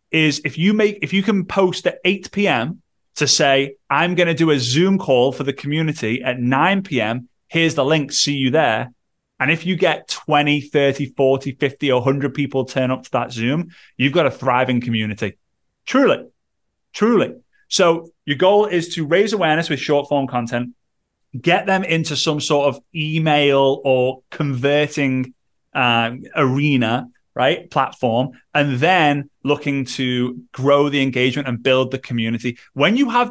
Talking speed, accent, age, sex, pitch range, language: 165 wpm, British, 30-49, male, 130-165 Hz, English